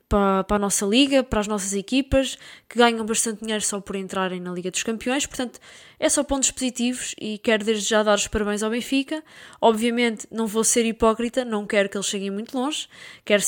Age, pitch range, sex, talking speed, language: 20-39, 205-235 Hz, female, 205 wpm, Portuguese